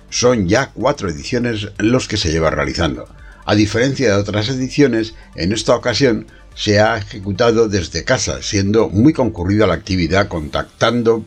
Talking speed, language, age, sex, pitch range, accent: 150 wpm, Spanish, 60-79, male, 90-115 Hz, Spanish